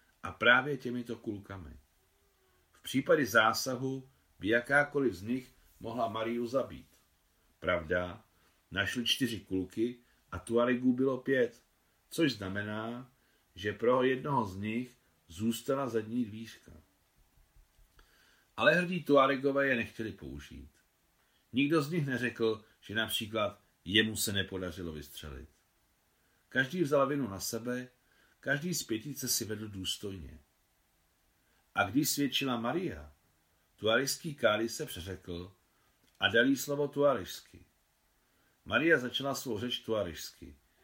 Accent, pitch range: native, 95-130 Hz